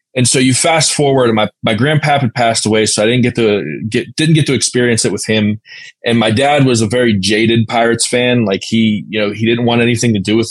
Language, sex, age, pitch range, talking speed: English, male, 20-39, 105-125 Hz, 255 wpm